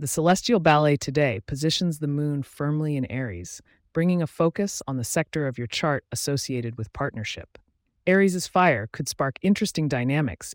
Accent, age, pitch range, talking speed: American, 30-49, 110-160 Hz, 160 wpm